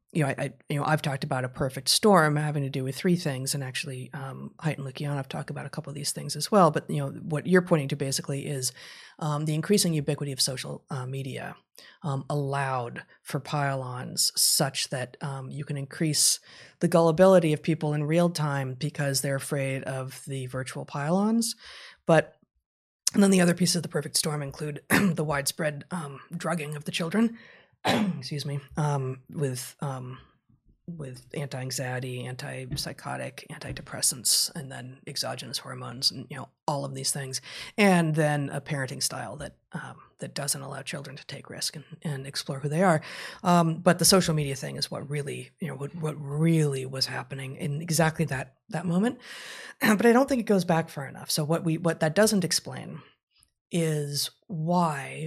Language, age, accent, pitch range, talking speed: English, 30-49, American, 135-165 Hz, 185 wpm